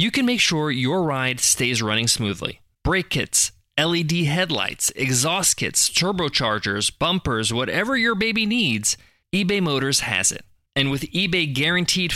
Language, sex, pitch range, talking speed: English, male, 120-170 Hz, 145 wpm